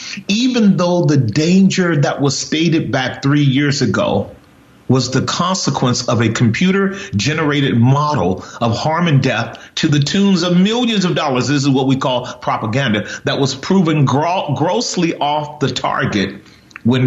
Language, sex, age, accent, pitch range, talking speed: English, male, 40-59, American, 120-155 Hz, 155 wpm